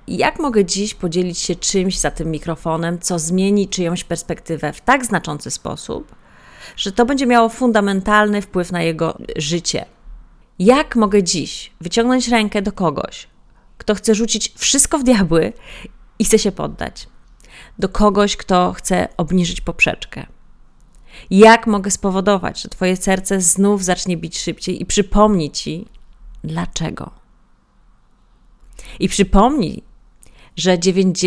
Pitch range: 175-210 Hz